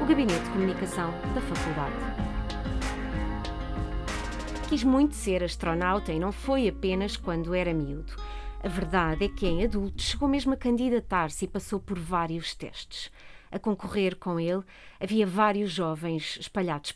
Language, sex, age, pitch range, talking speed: Portuguese, female, 30-49, 165-205 Hz, 140 wpm